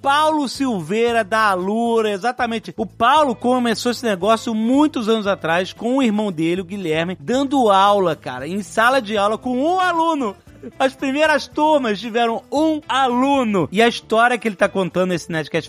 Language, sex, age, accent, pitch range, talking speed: Portuguese, male, 30-49, Brazilian, 185-255 Hz, 170 wpm